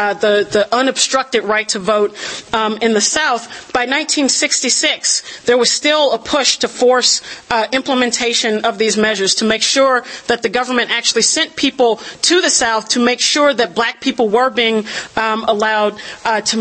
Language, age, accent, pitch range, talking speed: English, 40-59, American, 225-270 Hz, 175 wpm